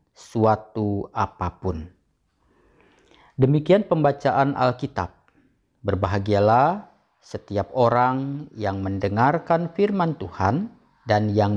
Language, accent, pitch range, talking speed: Indonesian, native, 95-130 Hz, 75 wpm